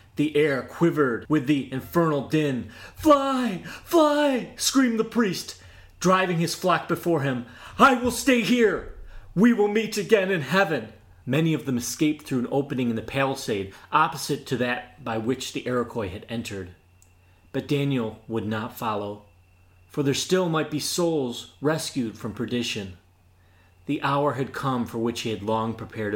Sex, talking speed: male, 160 wpm